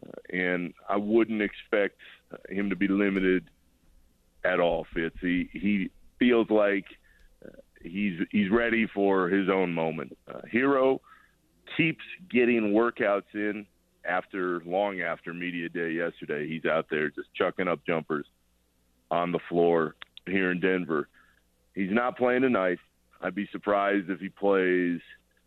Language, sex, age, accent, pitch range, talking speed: English, male, 40-59, American, 85-110 Hz, 140 wpm